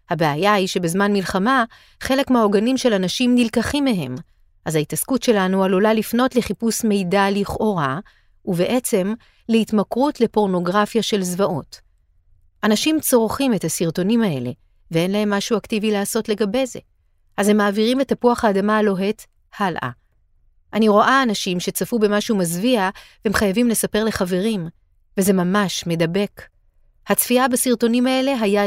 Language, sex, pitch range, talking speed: Hebrew, female, 180-235 Hz, 125 wpm